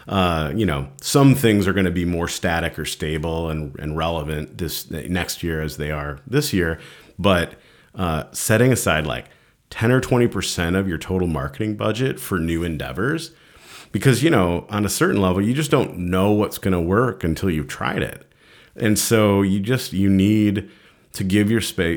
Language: English